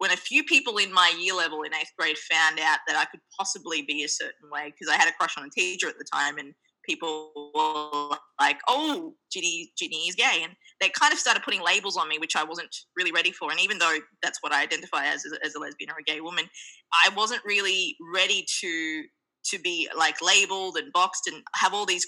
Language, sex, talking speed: English, female, 230 wpm